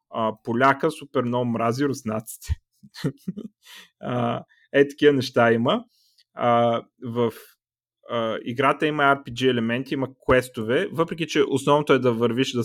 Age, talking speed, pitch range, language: 30-49, 125 wpm, 115-155 Hz, Bulgarian